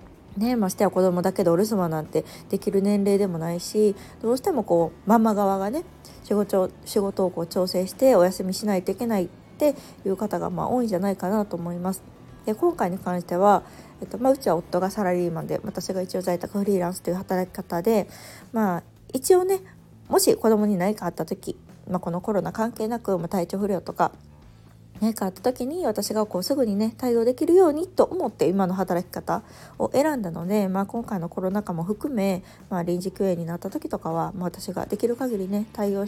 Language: Japanese